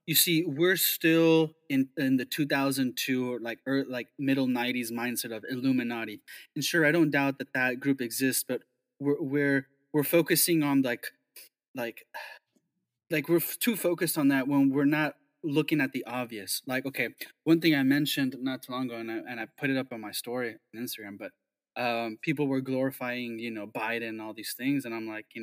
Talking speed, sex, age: 200 wpm, male, 20-39